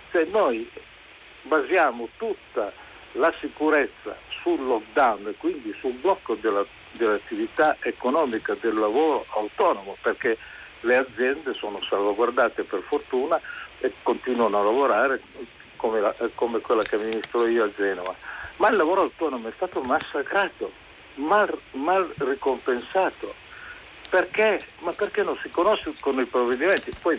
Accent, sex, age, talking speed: native, male, 60-79, 120 wpm